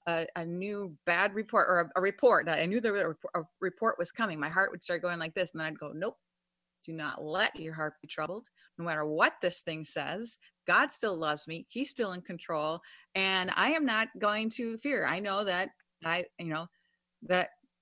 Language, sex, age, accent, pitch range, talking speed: English, female, 30-49, American, 180-240 Hz, 220 wpm